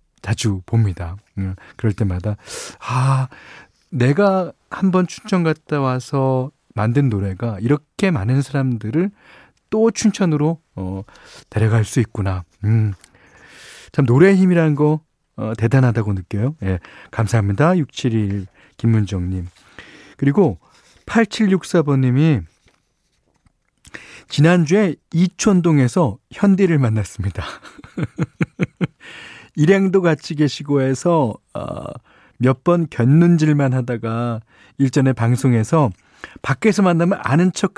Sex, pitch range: male, 110-160 Hz